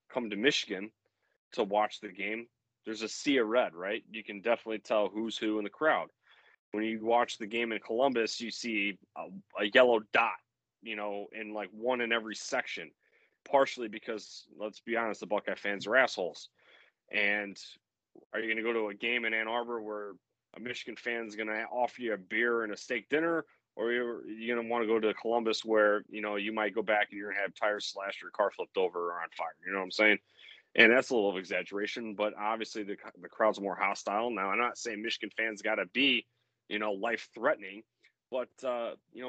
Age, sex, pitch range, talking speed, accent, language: 30-49, male, 105-120 Hz, 220 wpm, American, English